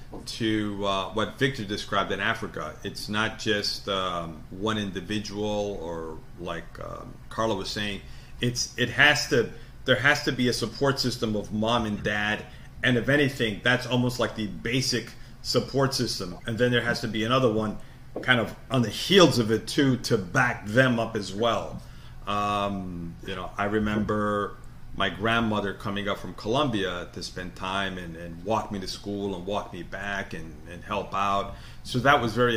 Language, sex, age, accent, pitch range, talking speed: English, male, 40-59, American, 100-120 Hz, 180 wpm